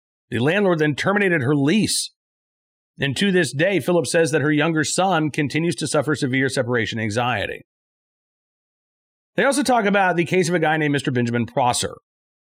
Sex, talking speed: male, 170 wpm